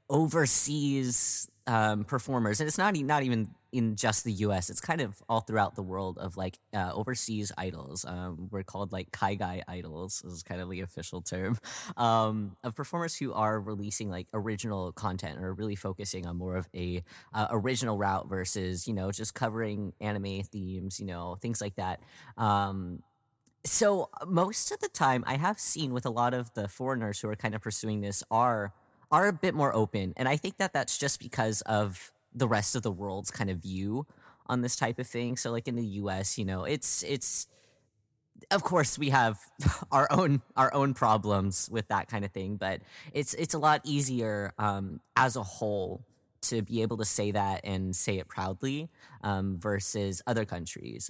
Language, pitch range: Japanese, 95-130 Hz